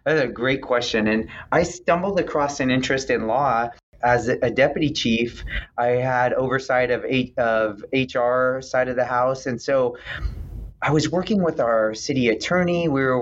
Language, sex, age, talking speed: English, male, 30-49, 170 wpm